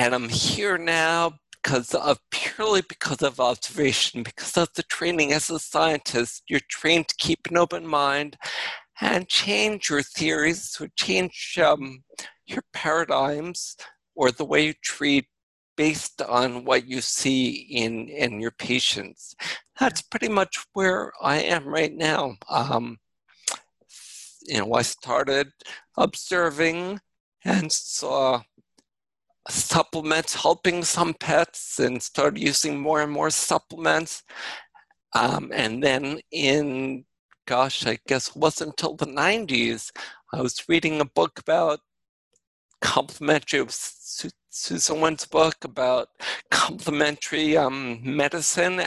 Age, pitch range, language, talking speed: 60-79, 130-165 Hz, English, 125 wpm